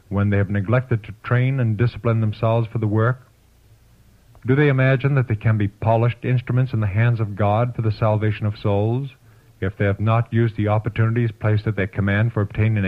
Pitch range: 105-120 Hz